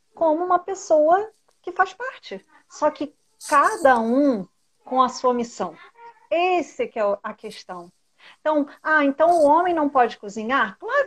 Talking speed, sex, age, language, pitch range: 150 wpm, female, 40-59, Portuguese, 220-290 Hz